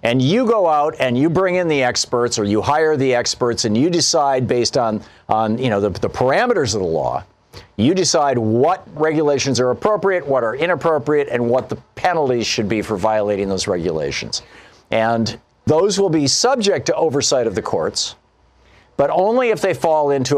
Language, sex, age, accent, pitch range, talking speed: English, male, 50-69, American, 120-155 Hz, 190 wpm